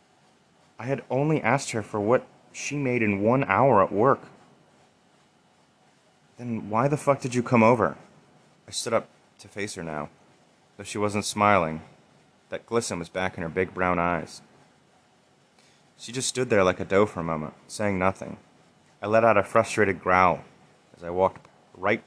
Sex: male